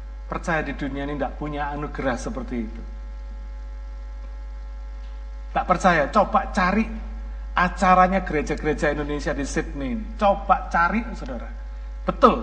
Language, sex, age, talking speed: Malay, male, 50-69, 105 wpm